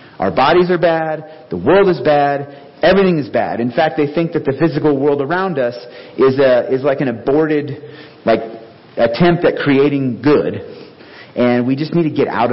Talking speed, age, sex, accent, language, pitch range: 185 wpm, 40-59, male, American, English, 130-165 Hz